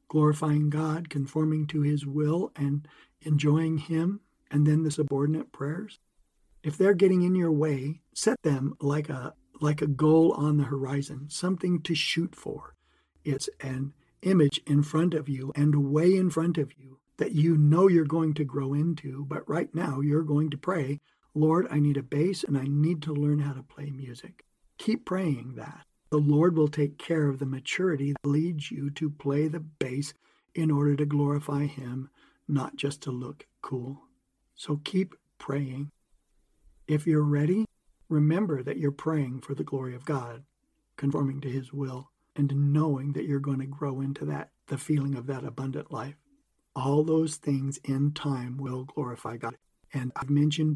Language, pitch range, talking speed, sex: English, 140-155 Hz, 175 wpm, male